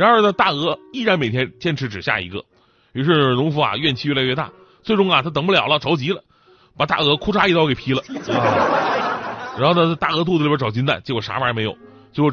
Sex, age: male, 30-49